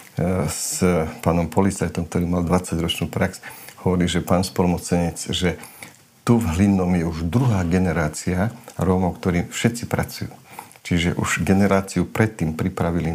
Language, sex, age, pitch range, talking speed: Slovak, male, 50-69, 90-100 Hz, 130 wpm